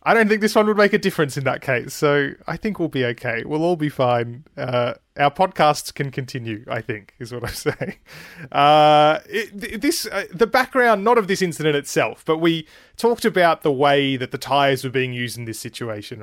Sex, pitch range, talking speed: male, 125-170 Hz, 220 wpm